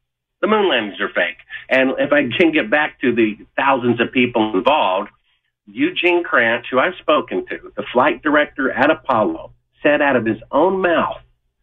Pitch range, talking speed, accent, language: 110-175 Hz, 175 wpm, American, English